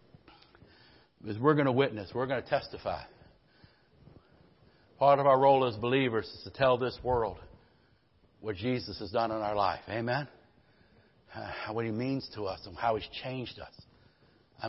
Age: 60-79